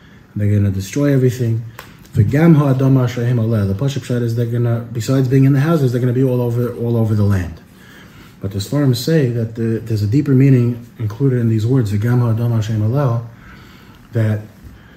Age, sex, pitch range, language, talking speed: 30-49, male, 105-130 Hz, English, 160 wpm